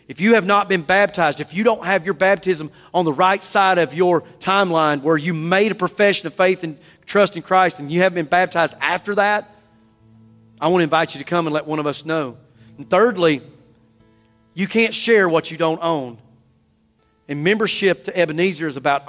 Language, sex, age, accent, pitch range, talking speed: English, male, 40-59, American, 130-180 Hz, 205 wpm